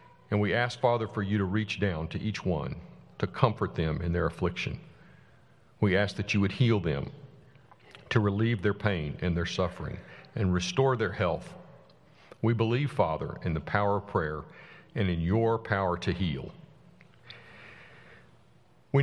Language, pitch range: English, 90-115 Hz